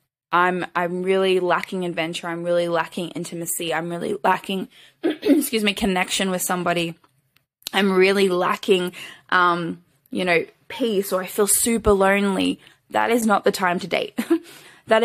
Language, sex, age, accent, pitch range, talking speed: English, female, 10-29, Australian, 165-195 Hz, 150 wpm